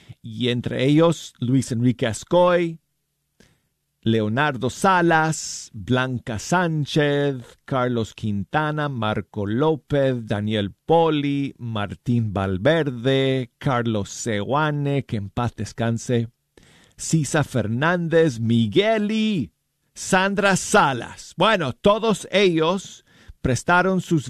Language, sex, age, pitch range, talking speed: Spanish, male, 50-69, 115-150 Hz, 85 wpm